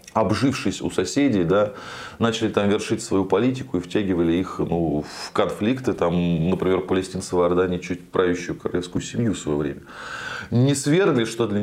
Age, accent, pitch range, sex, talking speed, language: 20-39, native, 95-125 Hz, male, 160 wpm, Russian